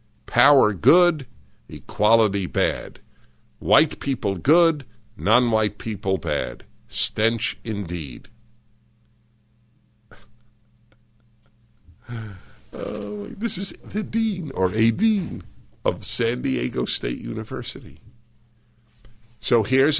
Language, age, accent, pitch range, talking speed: English, 60-79, American, 115-125 Hz, 80 wpm